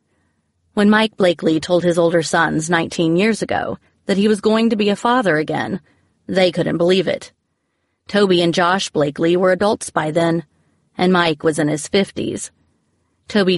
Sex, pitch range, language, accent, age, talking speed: female, 165-195 Hz, English, American, 30-49, 170 wpm